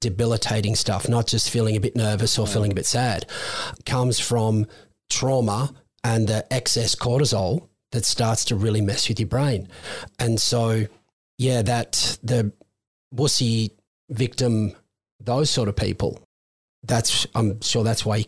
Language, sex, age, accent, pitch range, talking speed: English, male, 40-59, Australian, 110-125 Hz, 150 wpm